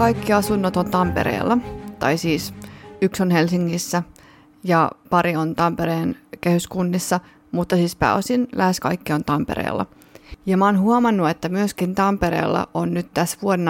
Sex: female